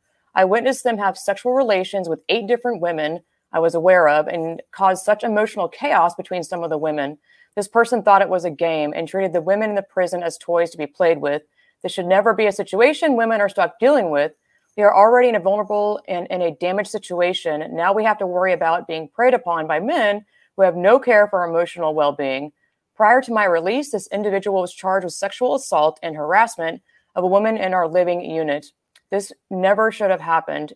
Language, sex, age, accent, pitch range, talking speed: English, female, 30-49, American, 165-210 Hz, 215 wpm